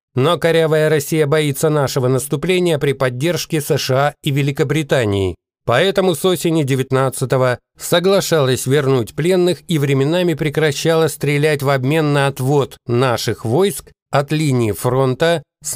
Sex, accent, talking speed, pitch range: male, native, 120 wpm, 125-160 Hz